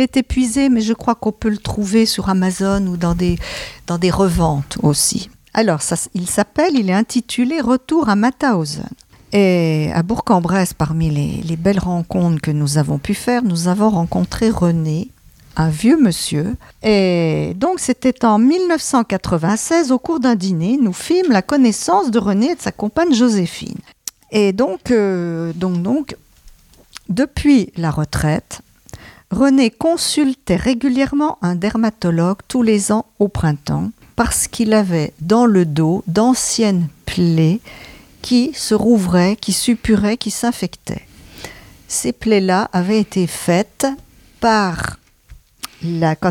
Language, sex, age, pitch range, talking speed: French, female, 50-69, 175-240 Hz, 145 wpm